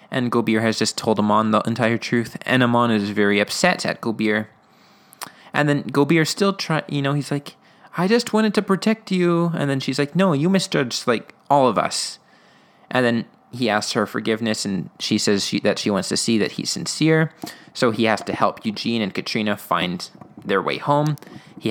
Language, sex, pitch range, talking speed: English, male, 110-140 Hz, 200 wpm